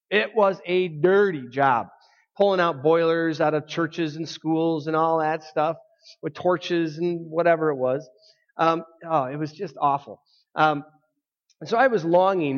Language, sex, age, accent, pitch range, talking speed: English, male, 30-49, American, 150-195 Hz, 165 wpm